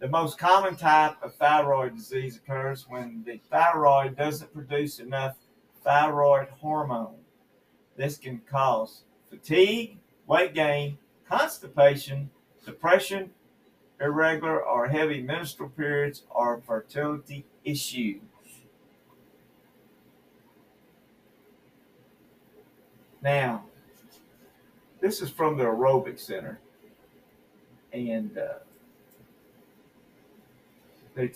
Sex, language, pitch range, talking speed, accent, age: male, English, 125-155 Hz, 80 wpm, American, 50-69